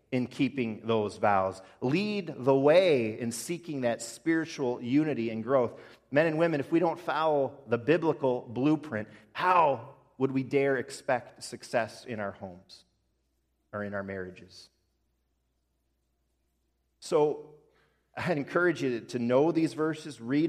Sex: male